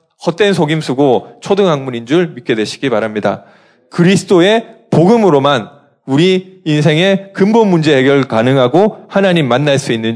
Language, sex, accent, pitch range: Korean, male, native, 130-175 Hz